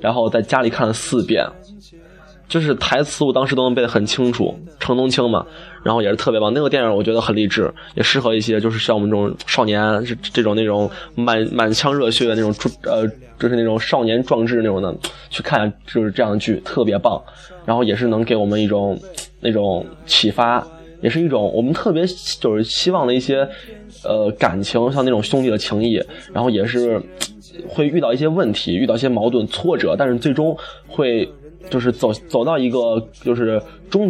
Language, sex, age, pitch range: Chinese, male, 20-39, 110-140 Hz